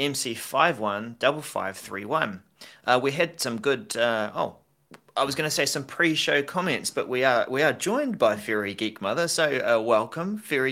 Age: 30-49